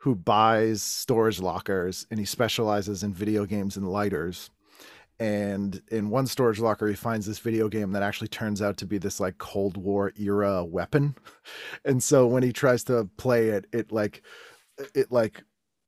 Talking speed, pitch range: 175 wpm, 105-130 Hz